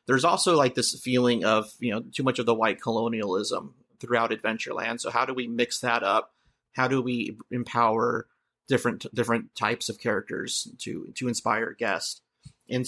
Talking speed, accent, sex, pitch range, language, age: 170 wpm, American, male, 115-130 Hz, English, 30-49